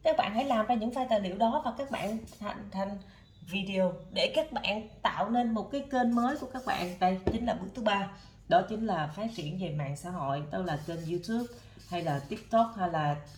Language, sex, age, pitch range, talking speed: Vietnamese, female, 20-39, 175-245 Hz, 235 wpm